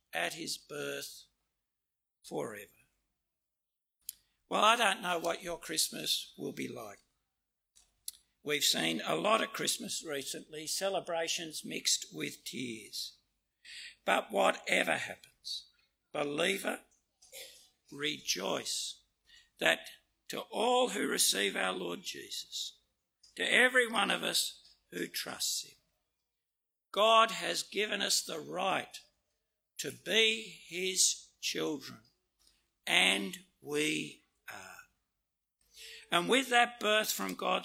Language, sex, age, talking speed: English, male, 60-79, 105 wpm